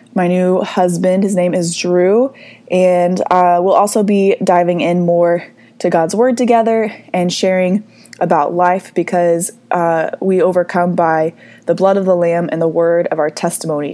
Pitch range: 170-195 Hz